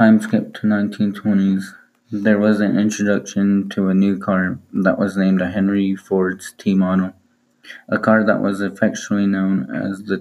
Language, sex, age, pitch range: English, male, 20-39, 95-105 Hz